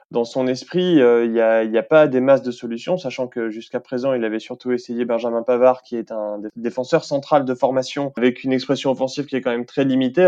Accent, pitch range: French, 115-135 Hz